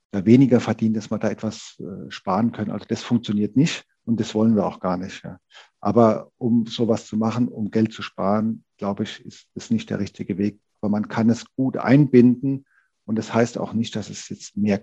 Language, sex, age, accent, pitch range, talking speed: German, male, 40-59, German, 110-125 Hz, 210 wpm